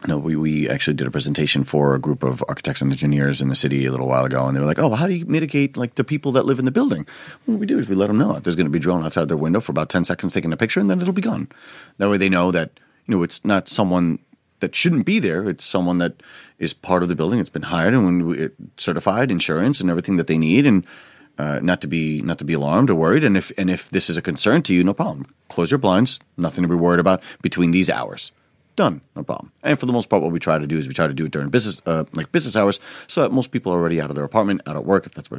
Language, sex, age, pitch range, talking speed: English, male, 40-59, 75-110 Hz, 305 wpm